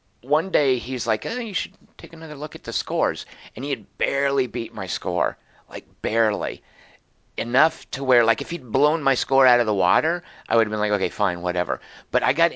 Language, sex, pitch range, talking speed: English, male, 125-170 Hz, 220 wpm